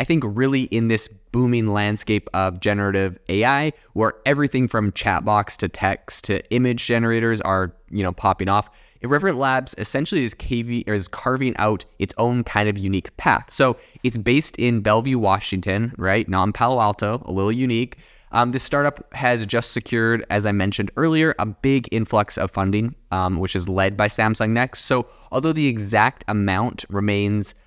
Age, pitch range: 20-39, 95-120 Hz